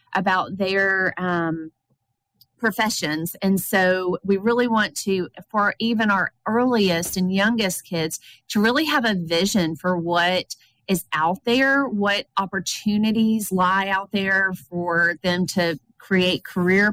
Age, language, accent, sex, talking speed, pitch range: 30-49, English, American, female, 130 wpm, 175-210 Hz